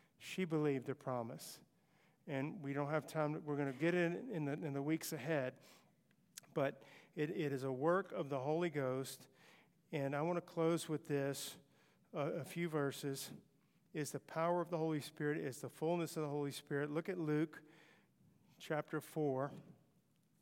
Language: English